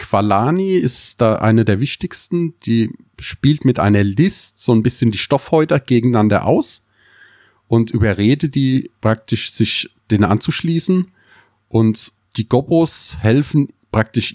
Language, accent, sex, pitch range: German, German, male, 105-135 Hz